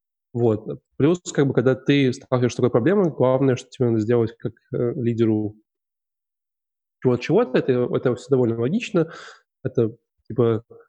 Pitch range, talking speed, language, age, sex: 115-135 Hz, 155 wpm, Russian, 20-39, male